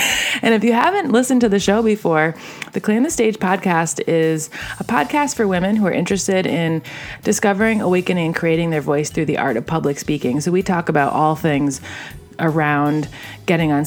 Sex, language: female, English